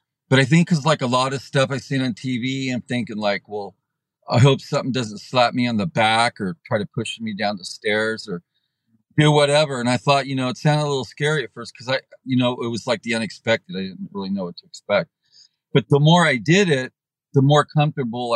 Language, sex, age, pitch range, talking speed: English, male, 40-59, 115-150 Hz, 240 wpm